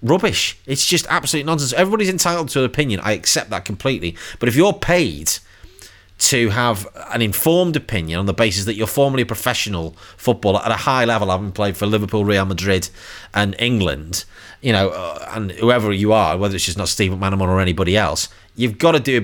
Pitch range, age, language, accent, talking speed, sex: 95-130 Hz, 30-49, English, British, 200 wpm, male